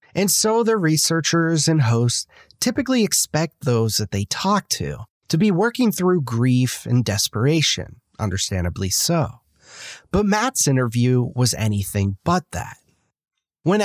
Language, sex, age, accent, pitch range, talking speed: English, male, 30-49, American, 110-180 Hz, 130 wpm